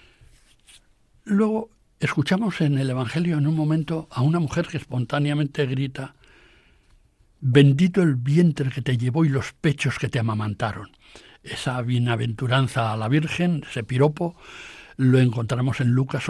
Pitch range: 125-155 Hz